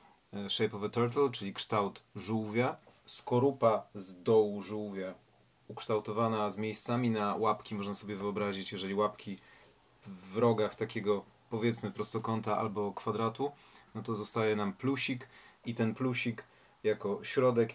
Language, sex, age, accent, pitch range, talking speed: Polish, male, 30-49, native, 105-120 Hz, 130 wpm